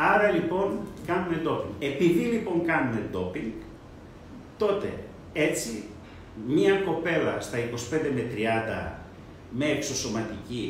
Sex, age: male, 50-69